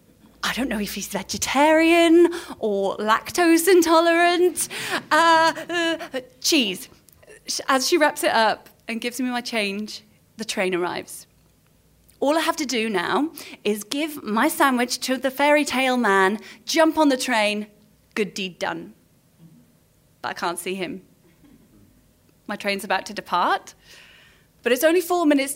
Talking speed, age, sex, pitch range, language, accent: 145 wpm, 20-39, female, 210-325 Hz, English, British